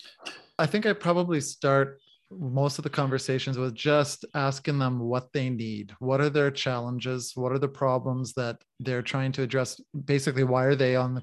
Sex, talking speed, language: male, 185 wpm, English